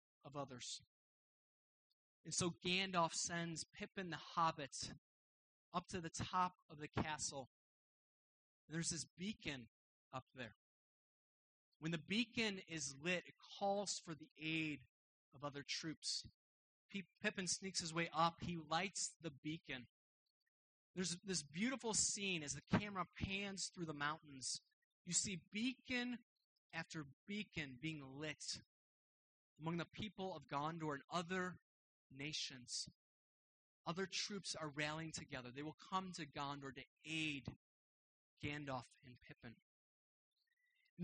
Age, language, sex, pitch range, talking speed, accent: 30-49, English, male, 140-185 Hz, 125 wpm, American